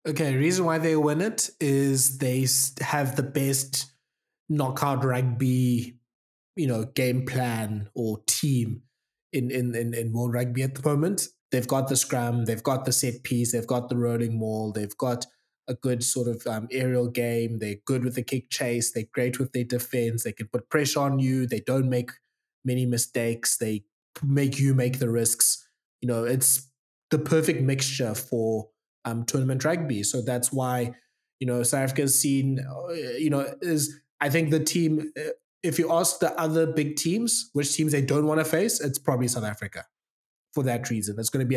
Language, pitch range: English, 120-145 Hz